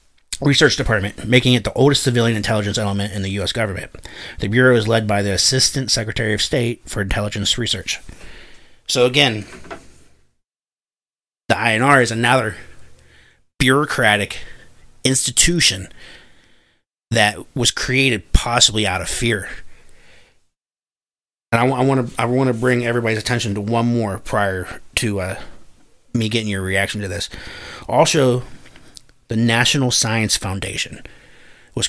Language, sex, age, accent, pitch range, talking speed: English, male, 30-49, American, 95-120 Hz, 125 wpm